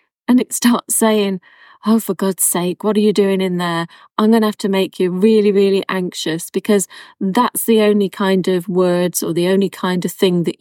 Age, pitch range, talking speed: 30-49, 180-225 Hz, 215 wpm